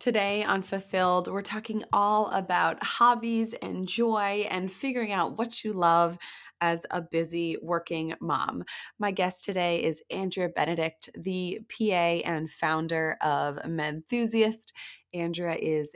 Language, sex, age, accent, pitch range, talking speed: English, female, 20-39, American, 160-200 Hz, 130 wpm